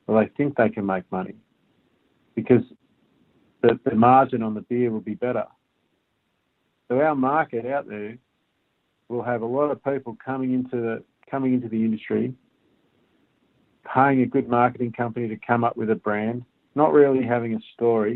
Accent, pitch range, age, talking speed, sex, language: Australian, 115-130 Hz, 50-69, 170 wpm, male, English